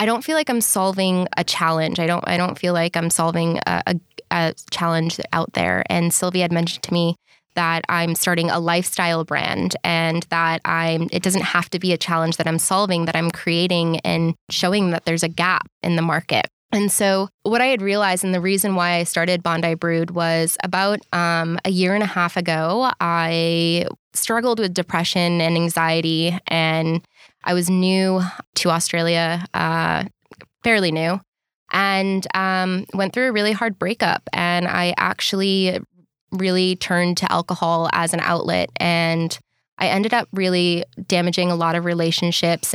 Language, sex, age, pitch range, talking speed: English, female, 20-39, 165-185 Hz, 175 wpm